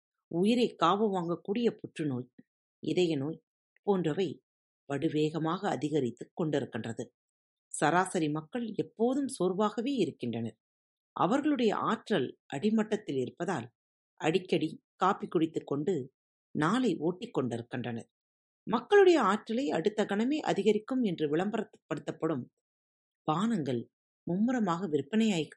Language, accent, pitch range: Tamil, native, 150-220 Hz